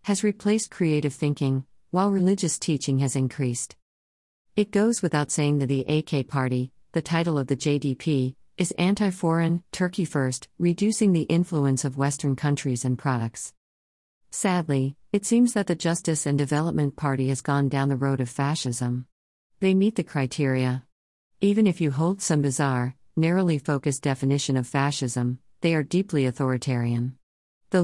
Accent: American